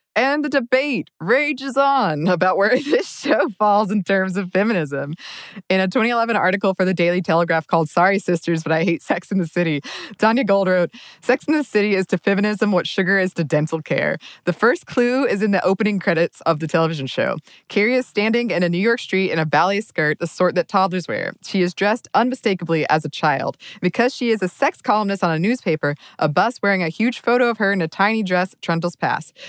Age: 20-39